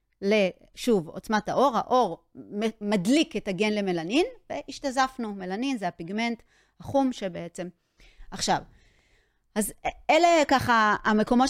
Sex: female